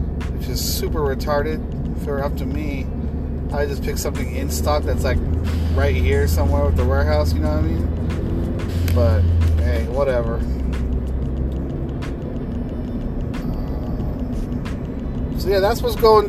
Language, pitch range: English, 65-80 Hz